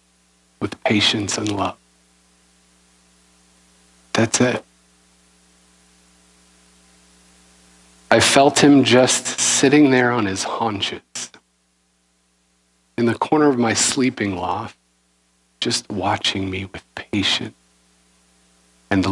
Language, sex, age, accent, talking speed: English, male, 50-69, American, 90 wpm